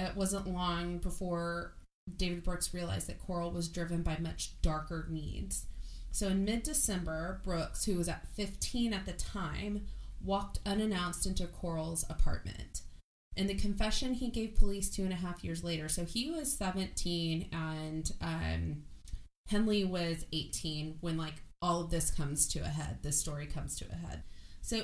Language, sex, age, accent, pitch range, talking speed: English, female, 20-39, American, 165-200 Hz, 165 wpm